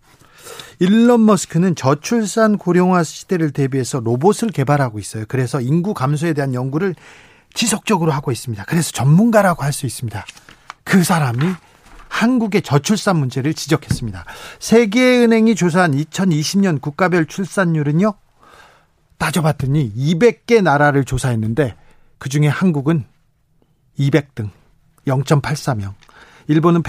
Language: Korean